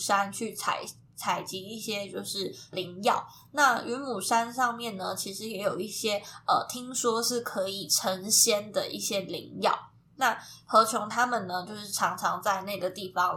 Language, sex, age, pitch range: Chinese, female, 20-39, 195-235 Hz